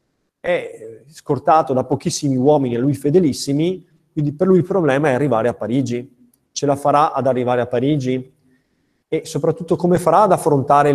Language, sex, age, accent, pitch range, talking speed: Italian, male, 30-49, native, 125-160 Hz, 165 wpm